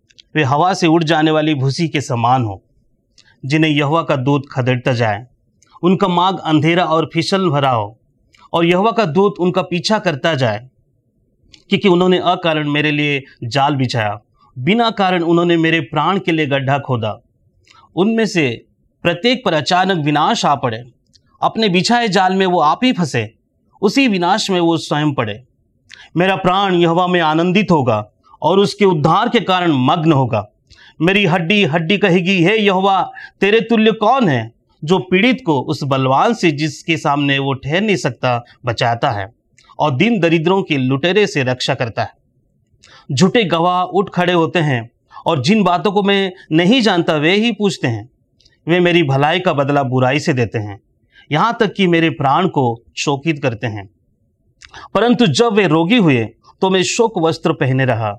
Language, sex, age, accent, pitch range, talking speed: Hindi, male, 30-49, native, 130-185 Hz, 165 wpm